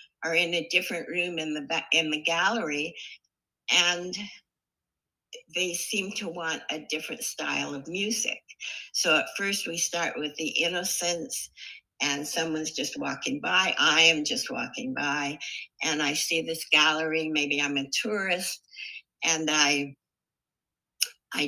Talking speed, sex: 140 wpm, female